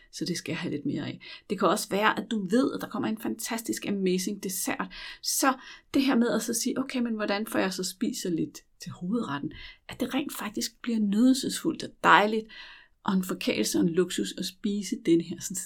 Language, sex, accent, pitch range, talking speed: Danish, female, native, 180-250 Hz, 215 wpm